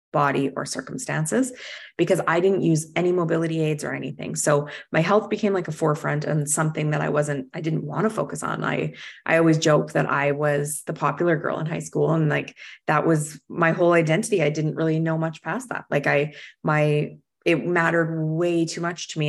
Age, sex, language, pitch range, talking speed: 20-39, female, English, 150-175 Hz, 210 wpm